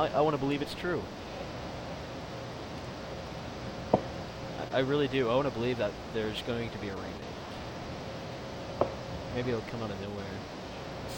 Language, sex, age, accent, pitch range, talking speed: English, male, 20-39, American, 110-135 Hz, 155 wpm